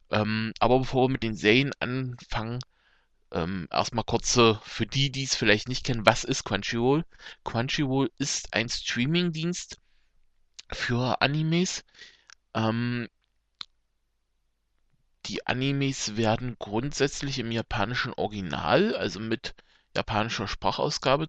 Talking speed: 110 wpm